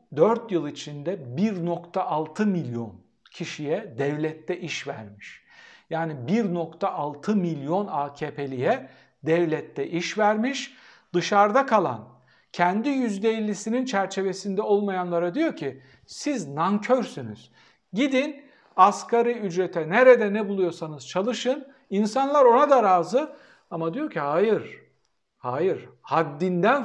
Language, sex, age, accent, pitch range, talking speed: Turkish, male, 60-79, native, 160-220 Hz, 95 wpm